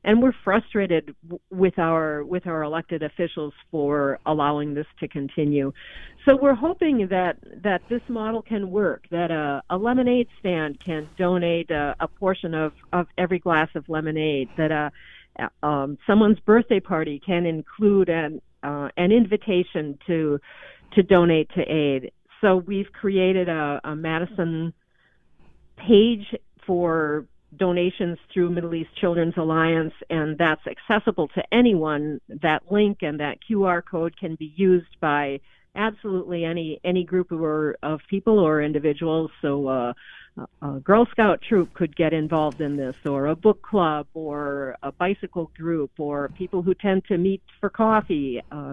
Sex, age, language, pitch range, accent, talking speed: female, 50-69, English, 155-200 Hz, American, 150 wpm